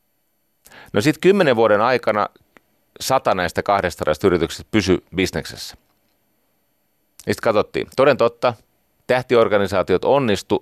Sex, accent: male, native